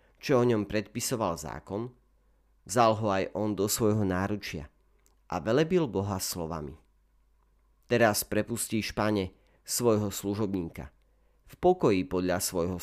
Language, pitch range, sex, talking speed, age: Slovak, 80-115 Hz, male, 115 wpm, 40-59